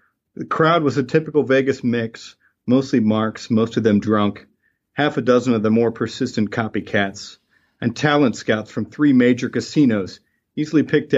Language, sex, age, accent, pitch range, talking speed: English, male, 40-59, American, 110-135 Hz, 160 wpm